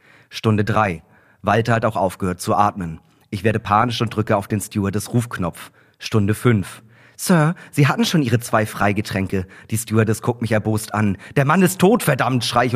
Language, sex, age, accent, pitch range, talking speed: German, male, 40-59, German, 110-160 Hz, 185 wpm